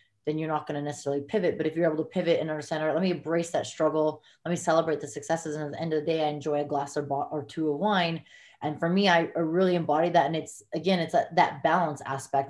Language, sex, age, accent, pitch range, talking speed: English, female, 20-39, American, 150-170 Hz, 285 wpm